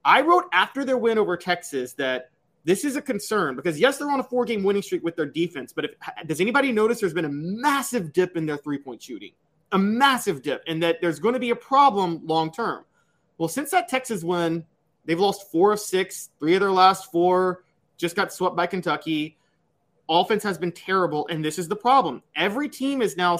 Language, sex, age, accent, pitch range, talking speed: English, male, 30-49, American, 155-205 Hz, 210 wpm